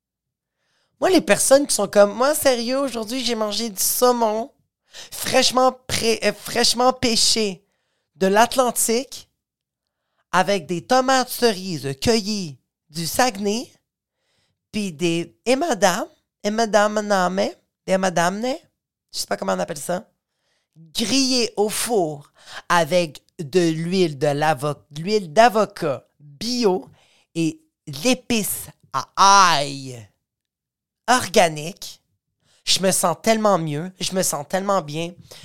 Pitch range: 175-225 Hz